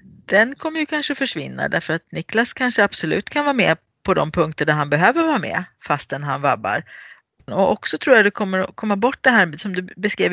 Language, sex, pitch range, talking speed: Swedish, female, 160-220 Hz, 220 wpm